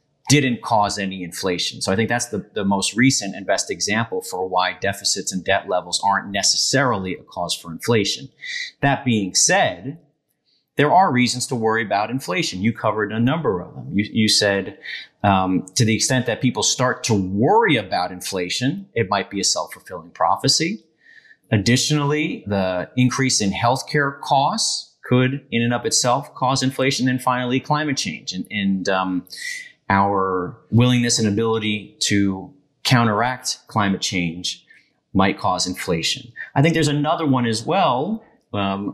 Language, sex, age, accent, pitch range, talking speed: English, male, 30-49, American, 100-130 Hz, 155 wpm